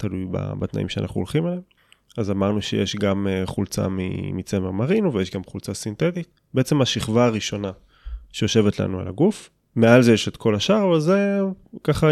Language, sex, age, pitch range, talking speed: Hebrew, male, 20-39, 95-125 Hz, 165 wpm